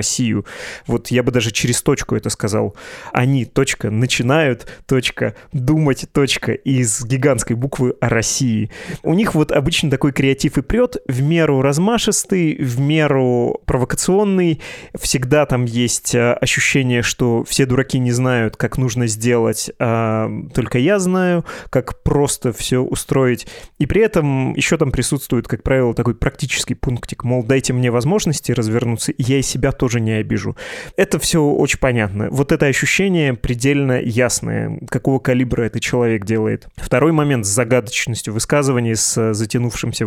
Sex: male